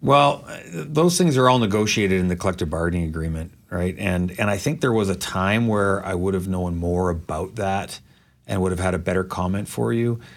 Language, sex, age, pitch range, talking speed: English, male, 40-59, 90-110 Hz, 215 wpm